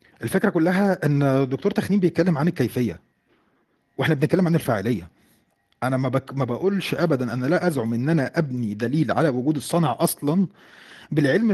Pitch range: 130-175 Hz